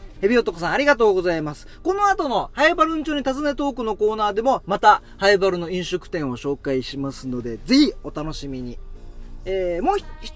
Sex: male